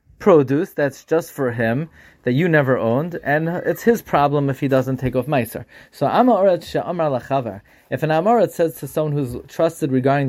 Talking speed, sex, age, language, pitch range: 170 wpm, male, 30-49, English, 130-170 Hz